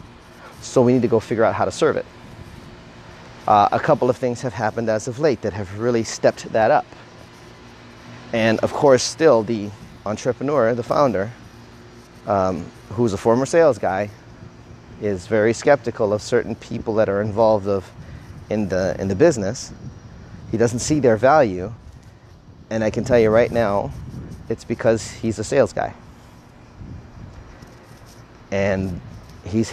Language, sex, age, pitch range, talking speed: English, male, 30-49, 100-120 Hz, 155 wpm